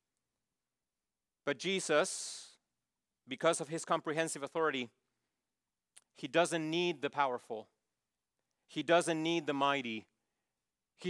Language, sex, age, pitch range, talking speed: English, male, 40-59, 125-190 Hz, 95 wpm